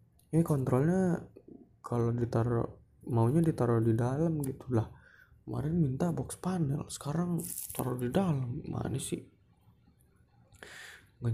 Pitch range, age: 115-130 Hz, 20-39